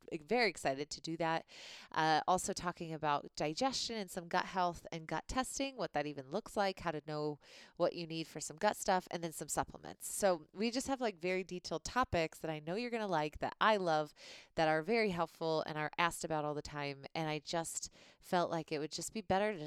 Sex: female